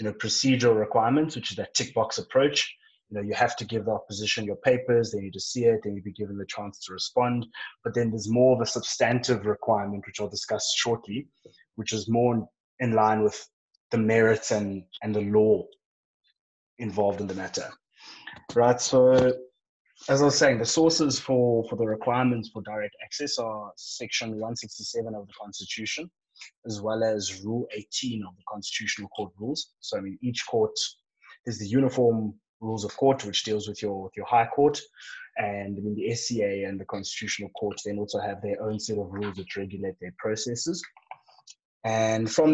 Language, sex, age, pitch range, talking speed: English, male, 20-39, 105-125 Hz, 190 wpm